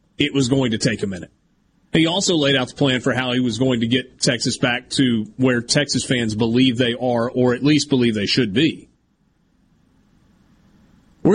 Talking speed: 195 wpm